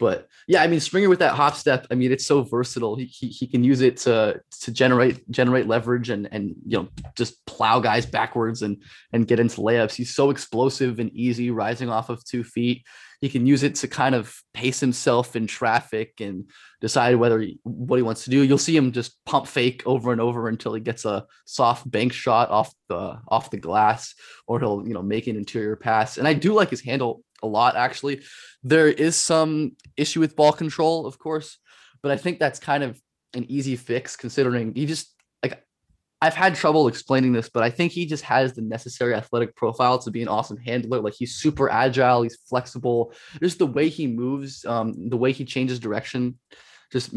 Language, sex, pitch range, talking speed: English, male, 115-140 Hz, 210 wpm